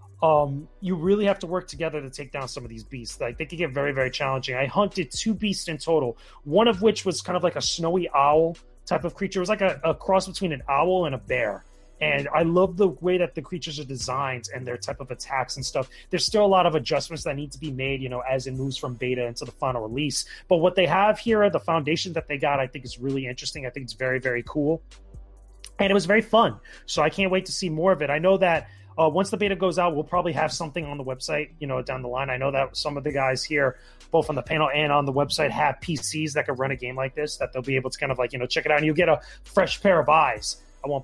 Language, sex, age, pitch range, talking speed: English, male, 30-49, 130-175 Hz, 285 wpm